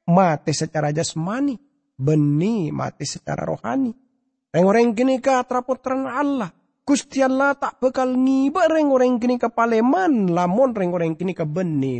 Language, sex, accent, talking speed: English, male, Indonesian, 135 wpm